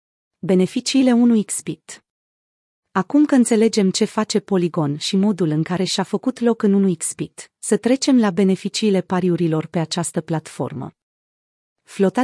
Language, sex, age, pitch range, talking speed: Romanian, female, 30-49, 175-220 Hz, 125 wpm